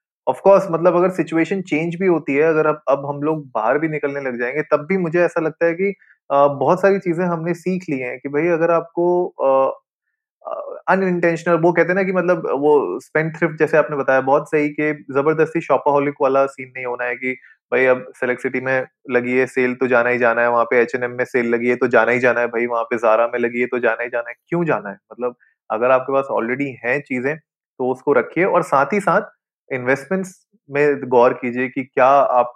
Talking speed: 220 wpm